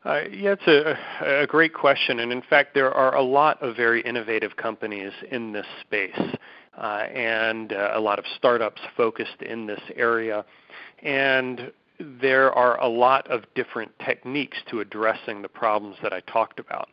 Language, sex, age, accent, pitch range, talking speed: English, male, 40-59, American, 110-125 Hz, 170 wpm